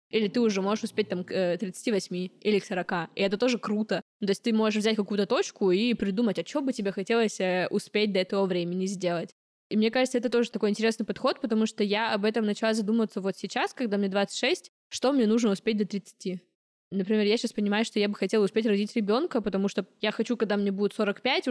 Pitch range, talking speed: 205-245 Hz, 220 wpm